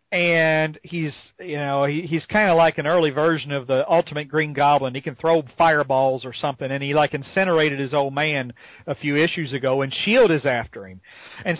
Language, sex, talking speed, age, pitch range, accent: English, male, 200 wpm, 40-59, 140-170 Hz, American